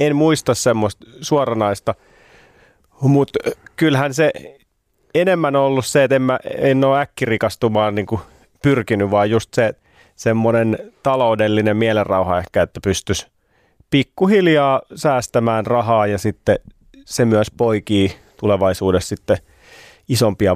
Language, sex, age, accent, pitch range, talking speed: Finnish, male, 30-49, native, 105-135 Hz, 115 wpm